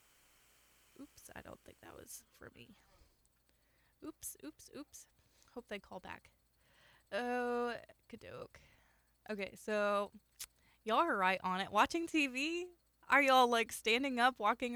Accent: American